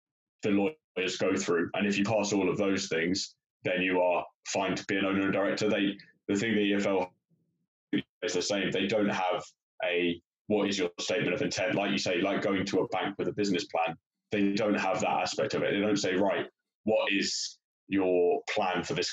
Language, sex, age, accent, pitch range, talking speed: English, male, 20-39, British, 90-100 Hz, 215 wpm